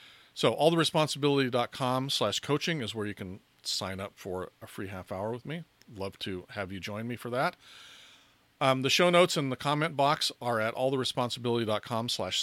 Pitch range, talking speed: 100-135 Hz, 180 wpm